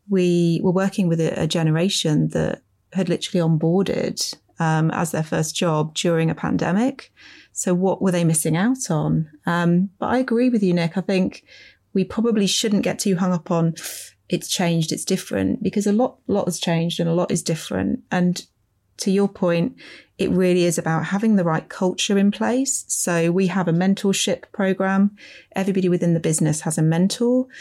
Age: 30-49